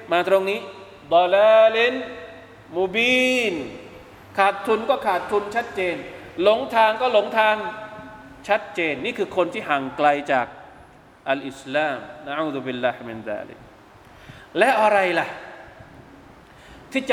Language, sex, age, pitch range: Thai, male, 20-39, 150-205 Hz